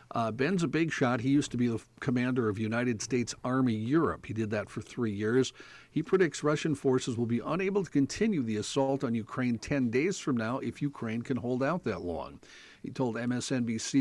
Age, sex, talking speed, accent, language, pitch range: 50-69, male, 210 wpm, American, English, 115-145 Hz